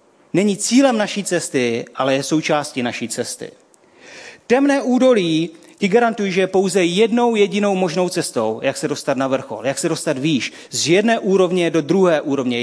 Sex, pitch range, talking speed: male, 145-210 Hz, 165 wpm